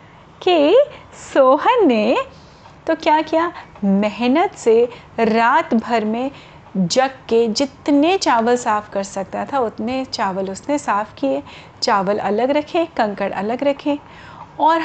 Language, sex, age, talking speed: Hindi, female, 30-49, 125 wpm